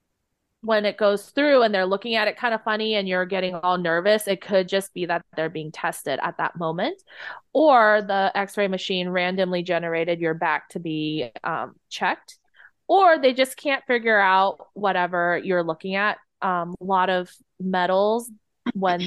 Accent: American